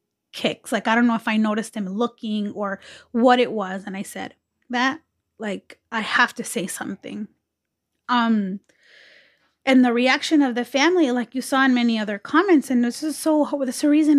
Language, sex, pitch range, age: English, female, 210-255 Hz, 30-49